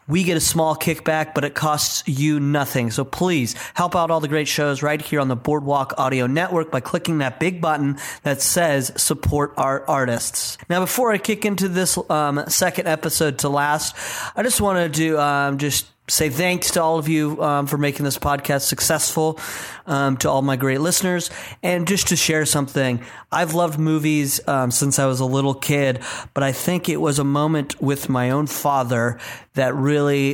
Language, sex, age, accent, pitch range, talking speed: English, male, 30-49, American, 135-160 Hz, 195 wpm